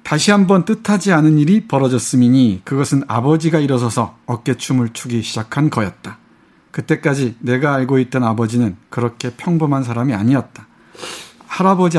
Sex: male